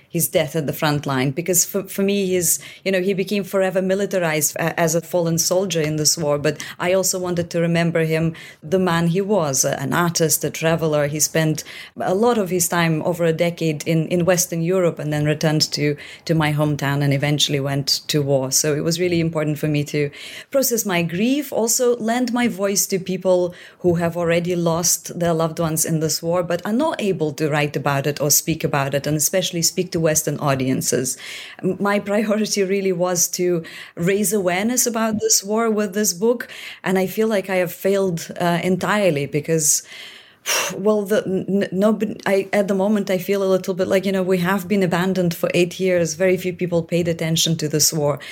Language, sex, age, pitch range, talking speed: English, female, 30-49, 155-190 Hz, 205 wpm